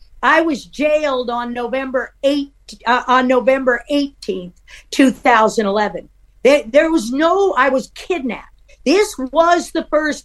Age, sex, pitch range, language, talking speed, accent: 50-69, female, 280-365 Hz, English, 125 wpm, American